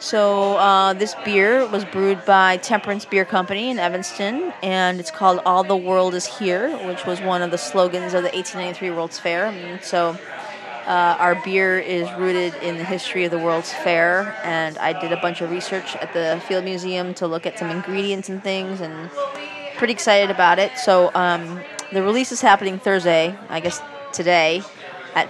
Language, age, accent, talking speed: English, 20-39, American, 185 wpm